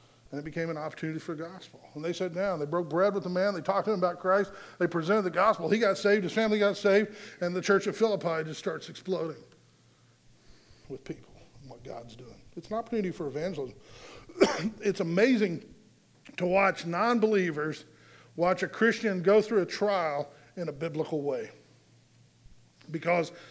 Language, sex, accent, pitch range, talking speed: English, male, American, 145-195 Hz, 180 wpm